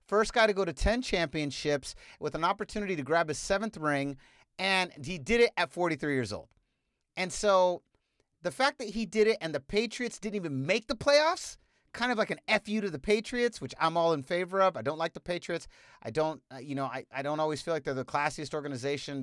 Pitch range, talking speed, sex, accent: 130-185 Hz, 230 wpm, male, American